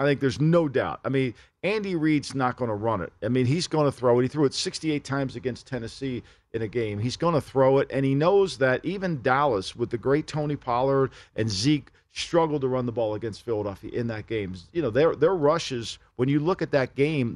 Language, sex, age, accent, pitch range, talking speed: English, male, 50-69, American, 120-150 Hz, 240 wpm